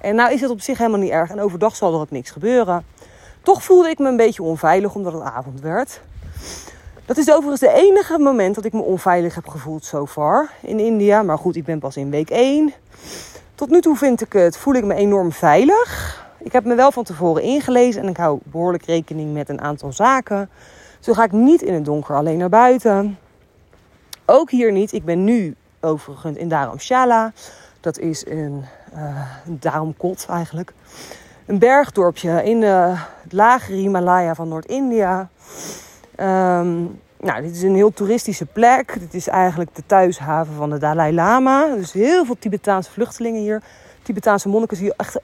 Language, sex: Dutch, female